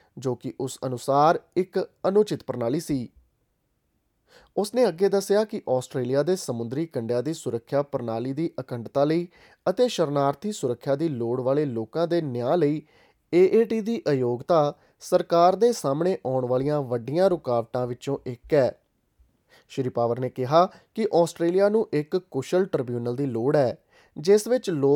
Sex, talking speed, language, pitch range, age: male, 125 wpm, Punjabi, 125-175 Hz, 30-49